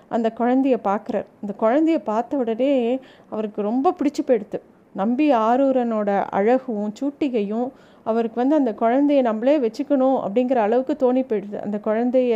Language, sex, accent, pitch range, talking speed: Tamil, female, native, 215-265 Hz, 130 wpm